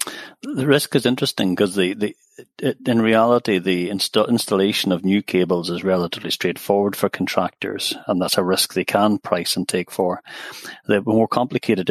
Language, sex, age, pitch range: English, male, 40-59, 95-105 Hz